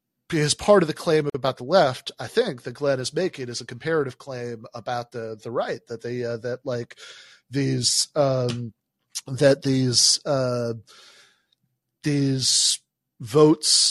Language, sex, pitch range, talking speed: English, male, 115-135 Hz, 145 wpm